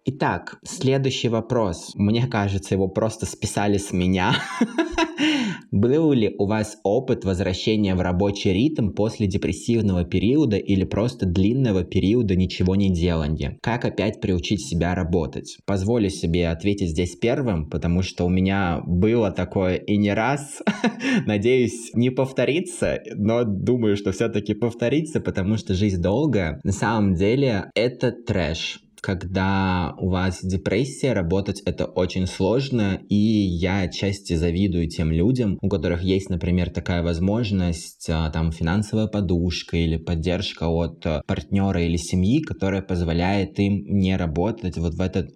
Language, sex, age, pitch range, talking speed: Russian, male, 20-39, 90-110 Hz, 135 wpm